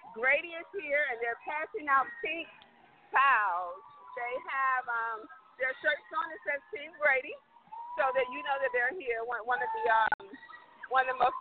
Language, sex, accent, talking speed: English, female, American, 185 wpm